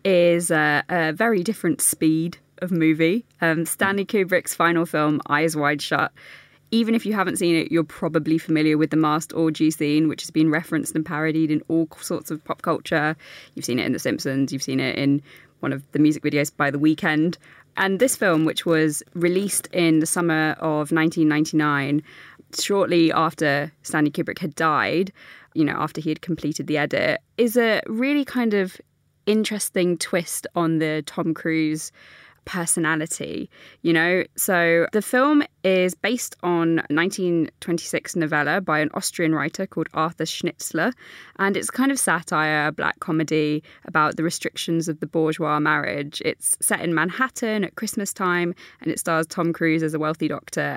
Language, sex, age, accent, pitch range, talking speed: English, female, 20-39, British, 155-180 Hz, 170 wpm